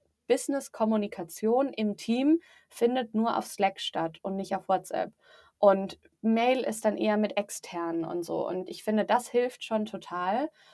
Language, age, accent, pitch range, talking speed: German, 20-39, German, 205-245 Hz, 155 wpm